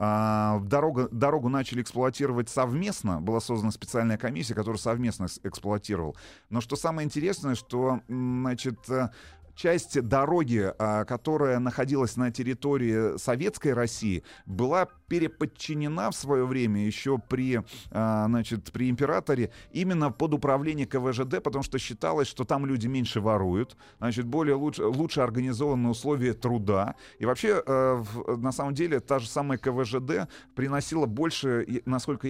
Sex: male